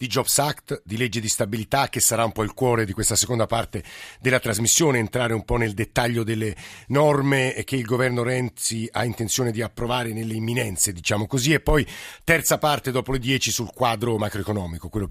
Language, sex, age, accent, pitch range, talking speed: Italian, male, 50-69, native, 110-130 Hz, 195 wpm